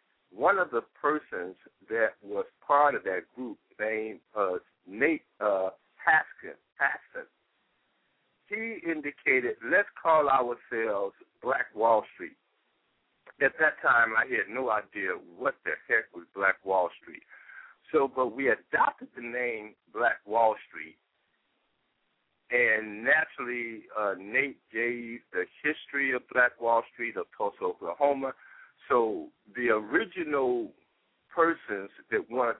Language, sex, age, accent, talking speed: English, male, 60-79, American, 125 wpm